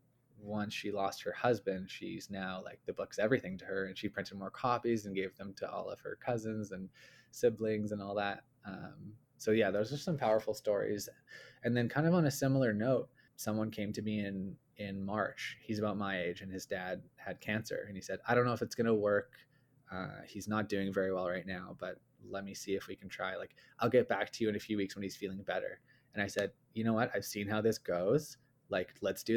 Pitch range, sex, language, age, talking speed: 100-120 Hz, male, English, 20-39, 240 wpm